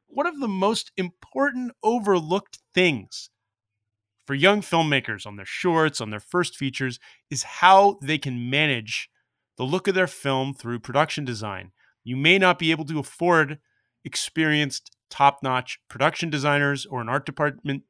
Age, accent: 30-49, American